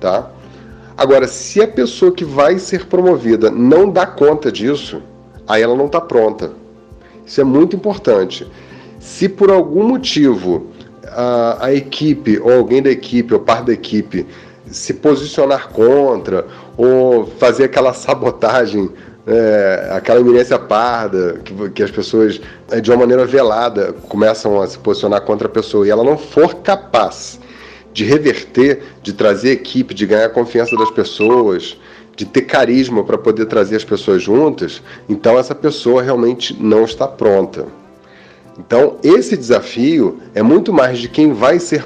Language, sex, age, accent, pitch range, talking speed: Portuguese, male, 40-59, Brazilian, 115-180 Hz, 150 wpm